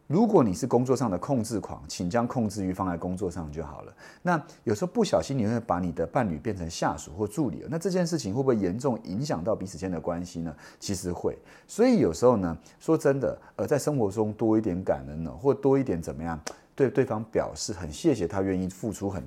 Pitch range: 90-135 Hz